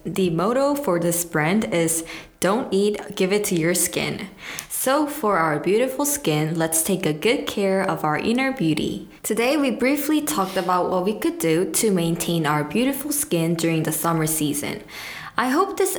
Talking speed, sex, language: 180 wpm, female, English